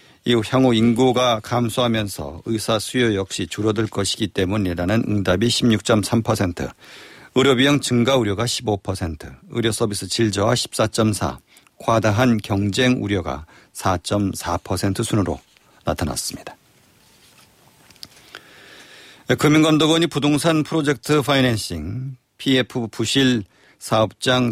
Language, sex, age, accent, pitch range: Korean, male, 50-69, native, 100-125 Hz